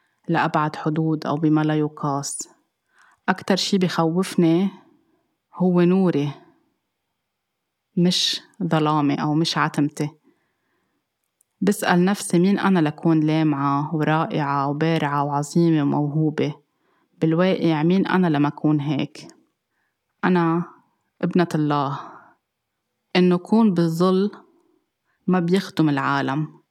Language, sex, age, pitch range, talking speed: Arabic, female, 20-39, 155-180 Hz, 90 wpm